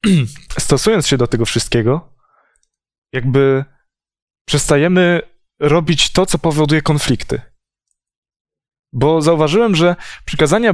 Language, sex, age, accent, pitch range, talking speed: Polish, male, 20-39, native, 125-155 Hz, 90 wpm